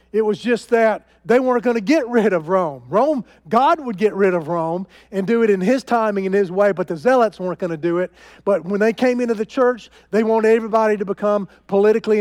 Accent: American